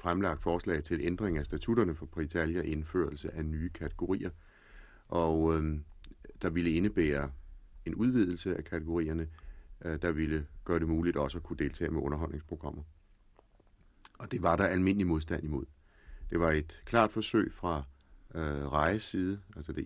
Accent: native